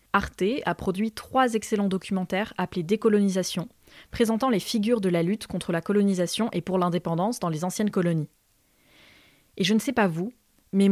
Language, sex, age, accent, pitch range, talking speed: French, female, 20-39, French, 180-220 Hz, 170 wpm